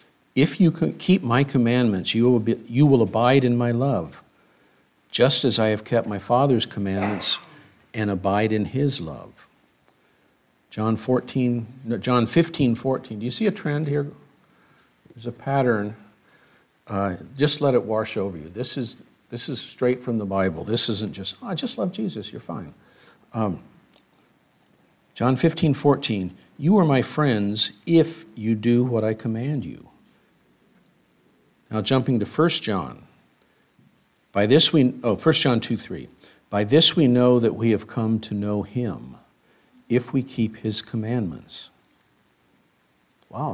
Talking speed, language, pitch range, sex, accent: 145 wpm, English, 105-130 Hz, male, American